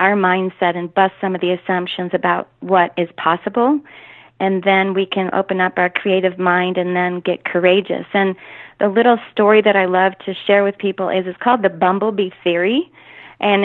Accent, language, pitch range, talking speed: American, English, 185-210 Hz, 190 wpm